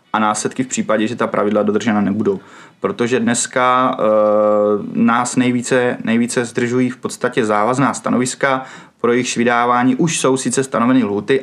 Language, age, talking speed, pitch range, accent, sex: Czech, 20-39, 140 wpm, 110-130 Hz, native, male